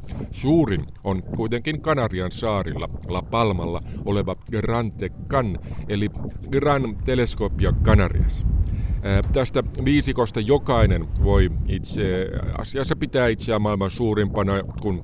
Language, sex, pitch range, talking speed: Finnish, male, 90-115 Hz, 95 wpm